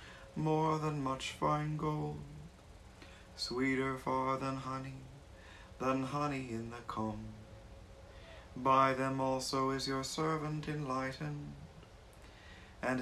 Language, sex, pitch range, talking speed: English, male, 100-135 Hz, 100 wpm